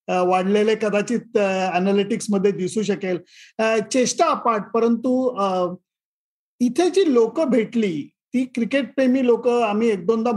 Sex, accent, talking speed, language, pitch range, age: male, native, 105 wpm, Marathi, 195-240 Hz, 50-69